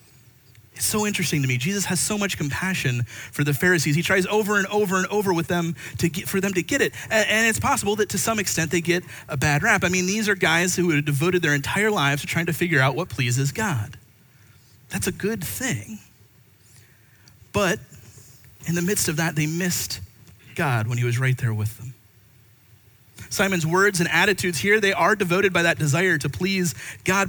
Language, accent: English, American